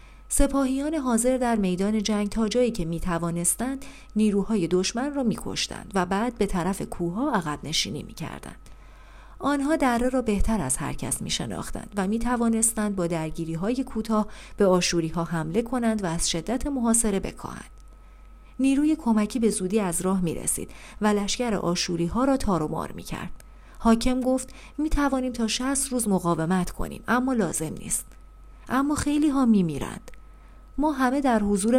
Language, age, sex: Persian, 40-59, female